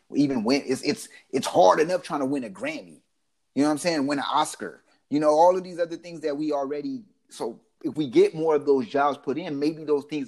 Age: 30-49